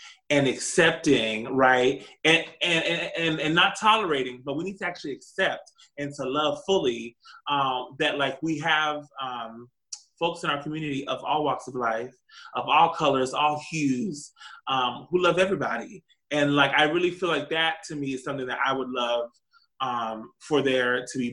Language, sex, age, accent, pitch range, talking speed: English, male, 20-39, American, 135-180 Hz, 180 wpm